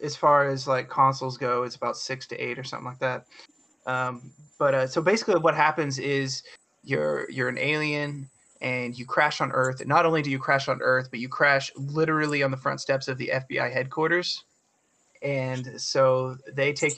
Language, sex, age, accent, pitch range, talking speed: English, male, 20-39, American, 130-150 Hz, 200 wpm